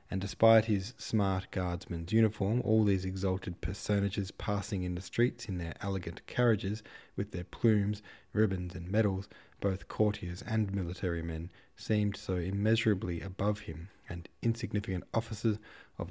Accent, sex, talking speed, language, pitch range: Australian, male, 140 wpm, English, 90-115 Hz